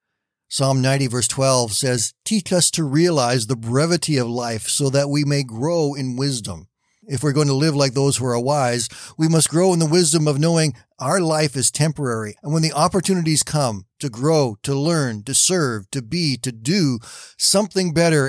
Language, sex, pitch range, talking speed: English, male, 125-160 Hz, 195 wpm